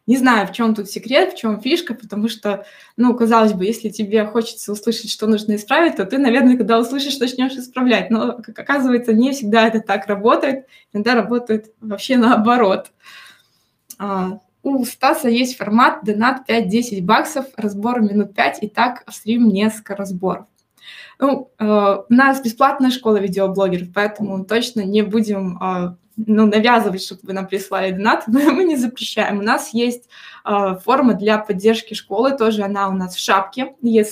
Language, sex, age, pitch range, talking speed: Russian, female, 20-39, 205-245 Hz, 165 wpm